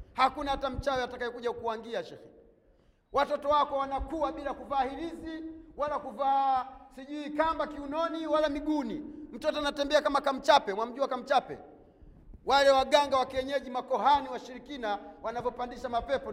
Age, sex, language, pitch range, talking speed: 40-59, male, Swahili, 245-300 Hz, 120 wpm